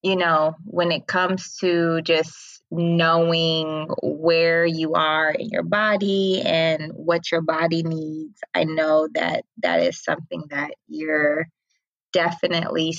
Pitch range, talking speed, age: 160-190 Hz, 130 wpm, 20-39